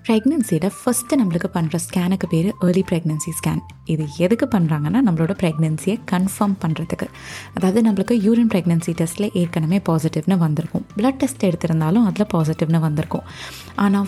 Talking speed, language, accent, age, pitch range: 165 wpm, Tamil, native, 20-39, 160-200 Hz